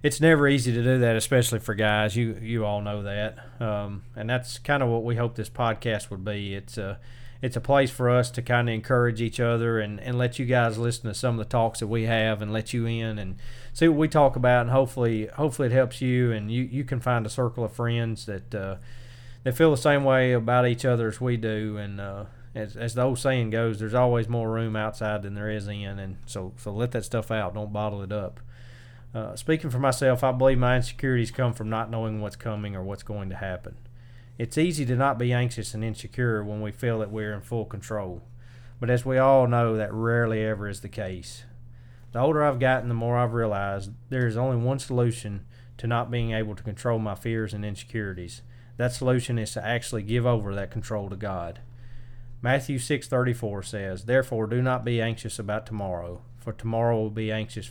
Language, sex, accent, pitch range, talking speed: English, male, American, 110-125 Hz, 220 wpm